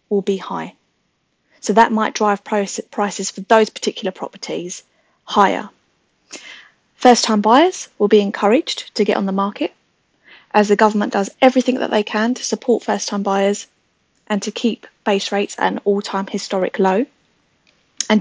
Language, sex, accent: English, female, British